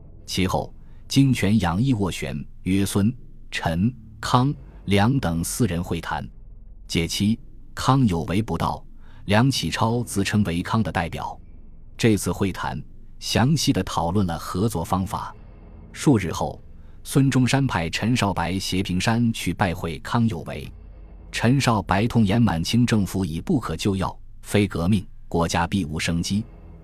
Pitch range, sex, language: 85-115 Hz, male, Chinese